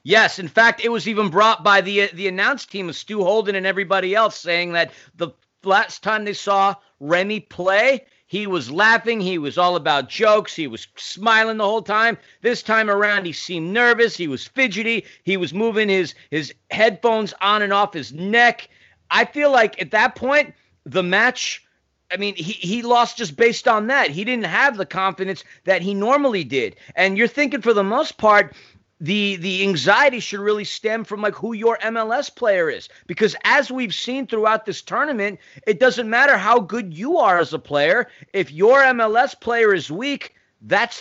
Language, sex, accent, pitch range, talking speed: English, male, American, 190-235 Hz, 190 wpm